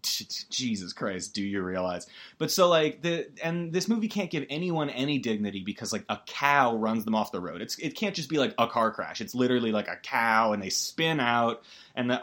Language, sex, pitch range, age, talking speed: English, male, 120-185 Hz, 30-49, 225 wpm